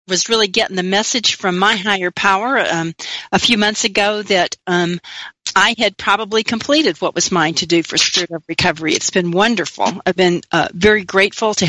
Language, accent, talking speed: English, American, 195 wpm